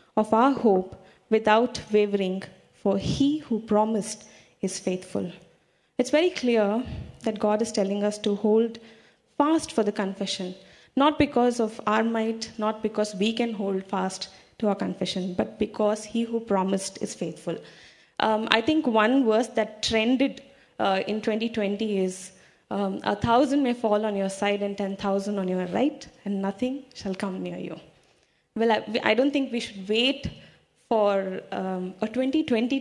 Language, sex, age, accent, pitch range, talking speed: English, female, 20-39, Indian, 195-230 Hz, 165 wpm